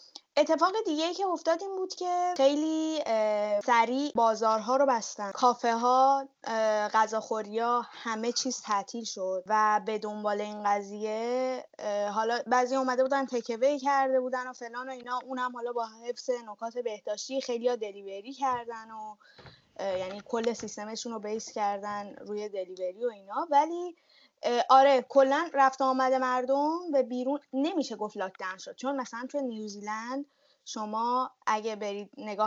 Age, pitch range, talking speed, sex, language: 10-29, 215-275 Hz, 140 wpm, female, Persian